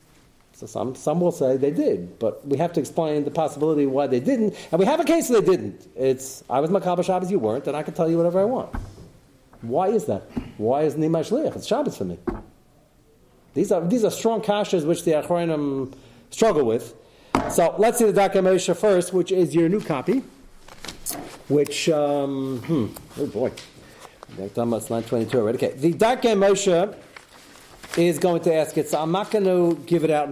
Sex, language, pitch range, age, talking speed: male, English, 130-170 Hz, 40-59, 200 wpm